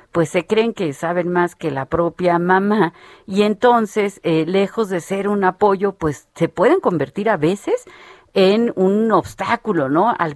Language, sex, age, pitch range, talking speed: Spanish, female, 40-59, 165-215 Hz, 170 wpm